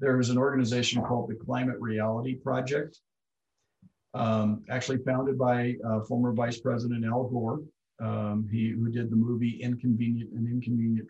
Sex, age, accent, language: male, 50-69, American, English